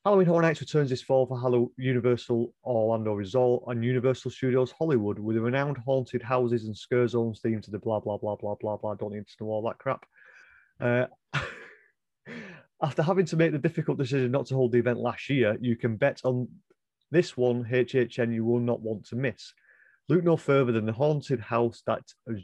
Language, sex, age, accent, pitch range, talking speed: English, male, 30-49, British, 115-135 Hz, 205 wpm